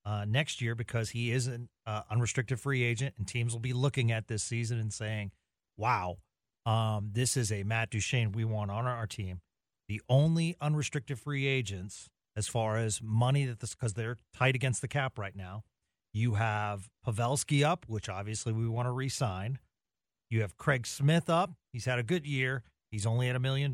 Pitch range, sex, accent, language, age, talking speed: 110-135 Hz, male, American, English, 40-59, 190 wpm